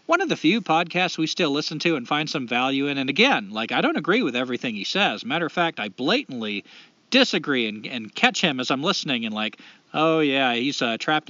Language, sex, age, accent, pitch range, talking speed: English, male, 40-59, American, 155-230 Hz, 235 wpm